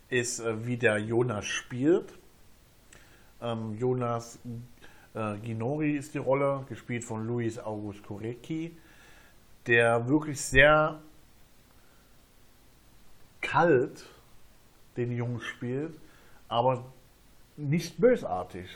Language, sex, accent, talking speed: German, male, German, 75 wpm